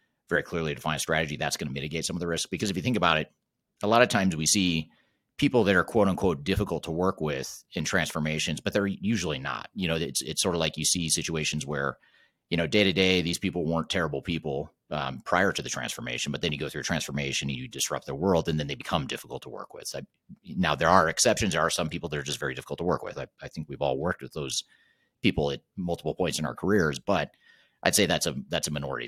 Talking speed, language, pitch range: 260 wpm, English, 75-85 Hz